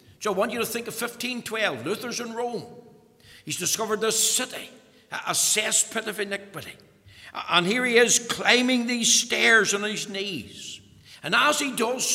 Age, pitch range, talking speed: 60-79, 200-245 Hz, 165 wpm